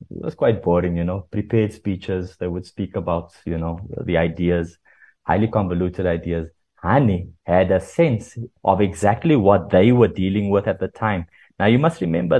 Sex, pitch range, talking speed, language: male, 95-115 Hz, 180 wpm, English